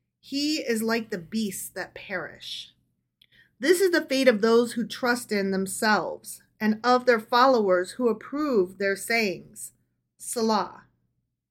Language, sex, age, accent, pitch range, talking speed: English, female, 30-49, American, 205-250 Hz, 135 wpm